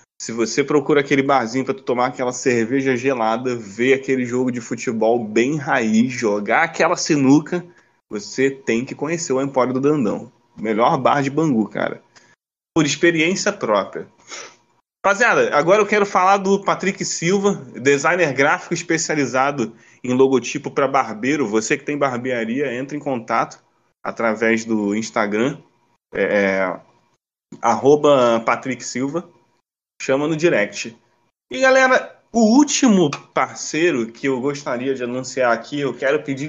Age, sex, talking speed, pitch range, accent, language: 20-39, male, 140 wpm, 120-175 Hz, Brazilian, Portuguese